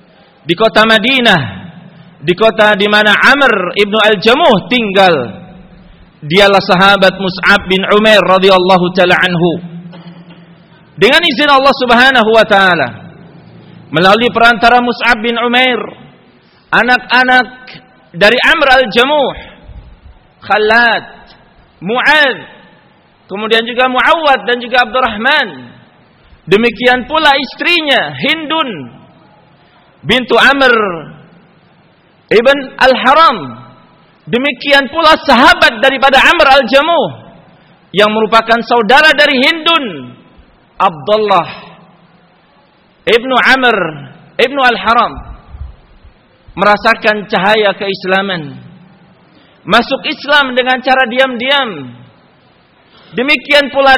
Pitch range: 190-260 Hz